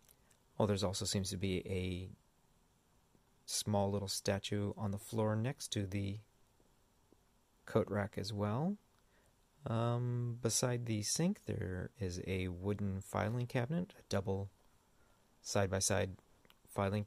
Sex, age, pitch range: male, 30-49, 95-115 Hz